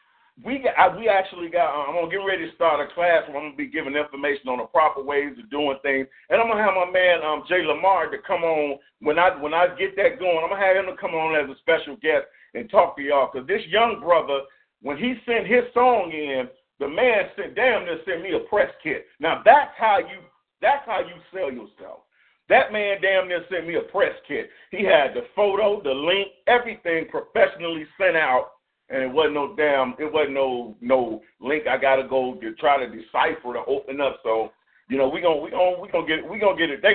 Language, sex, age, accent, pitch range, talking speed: English, male, 50-69, American, 145-200 Hz, 235 wpm